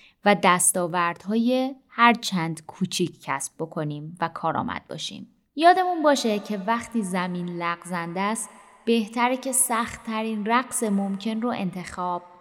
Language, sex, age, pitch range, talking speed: Persian, female, 20-39, 180-230 Hz, 115 wpm